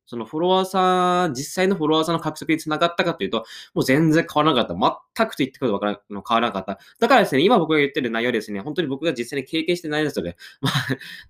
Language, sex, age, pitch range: Japanese, male, 20-39, 115-180 Hz